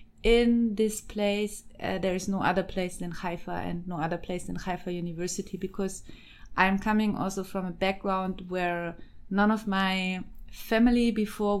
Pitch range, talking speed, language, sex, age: 185-215 Hz, 160 wpm, English, female, 20-39